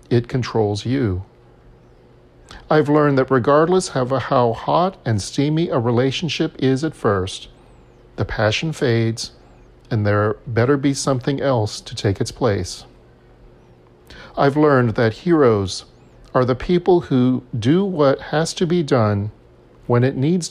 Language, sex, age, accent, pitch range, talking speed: English, male, 40-59, American, 100-140 Hz, 140 wpm